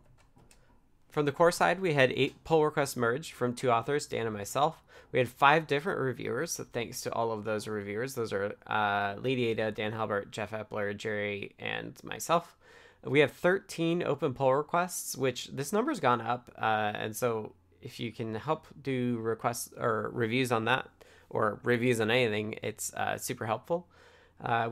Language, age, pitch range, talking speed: English, 20-39, 110-135 Hz, 175 wpm